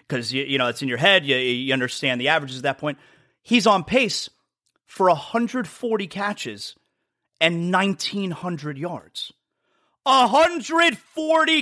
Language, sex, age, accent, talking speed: English, male, 30-49, American, 145 wpm